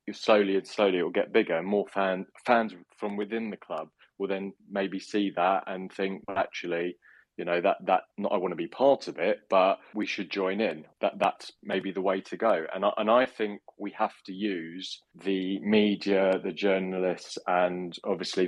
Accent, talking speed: British, 200 wpm